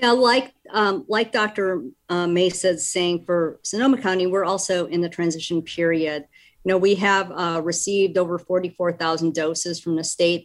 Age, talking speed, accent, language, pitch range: 50-69, 165 wpm, American, English, 165-190 Hz